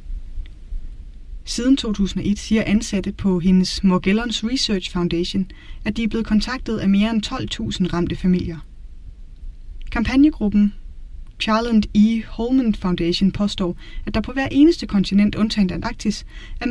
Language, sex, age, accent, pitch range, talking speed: Danish, female, 20-39, native, 170-220 Hz, 125 wpm